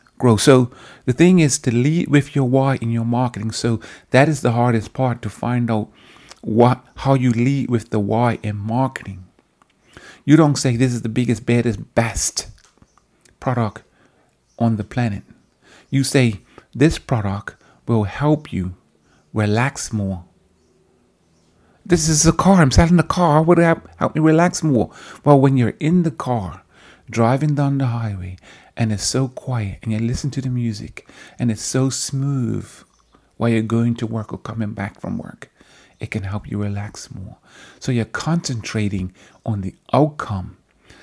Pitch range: 105-135 Hz